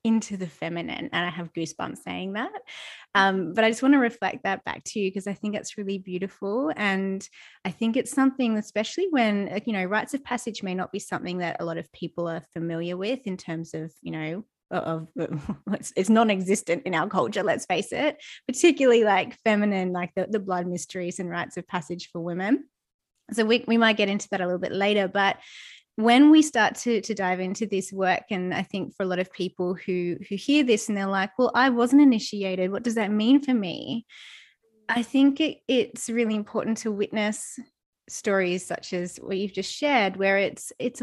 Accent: Australian